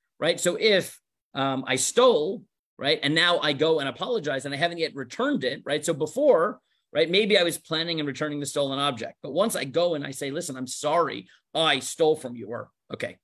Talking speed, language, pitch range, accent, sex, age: 220 wpm, English, 135-185 Hz, American, male, 40-59